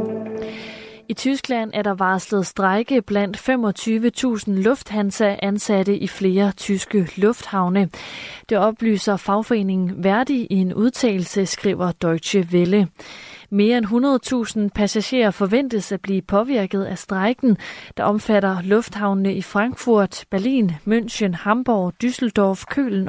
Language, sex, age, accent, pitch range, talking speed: Danish, female, 30-49, native, 190-225 Hz, 115 wpm